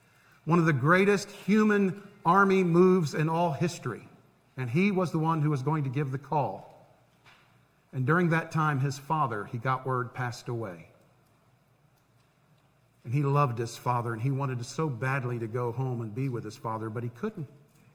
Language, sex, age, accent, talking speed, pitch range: English, male, 50-69, American, 180 wpm, 130-165 Hz